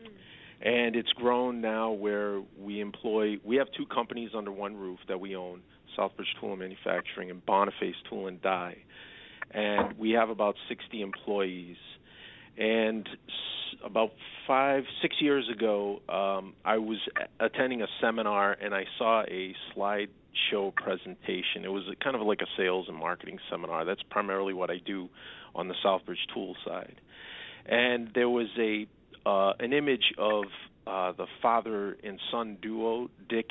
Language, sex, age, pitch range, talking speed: English, male, 40-59, 100-115 Hz, 155 wpm